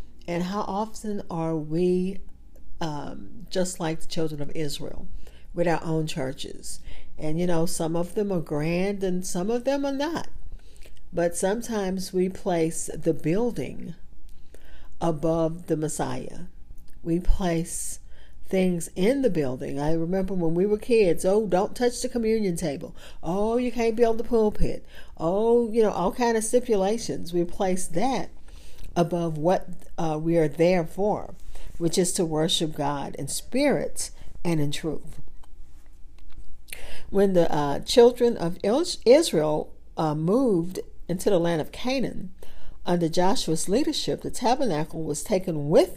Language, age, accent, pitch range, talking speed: English, 50-69, American, 155-200 Hz, 145 wpm